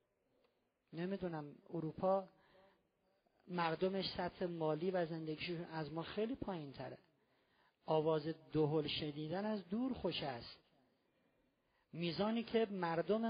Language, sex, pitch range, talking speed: Persian, male, 165-220 Hz, 95 wpm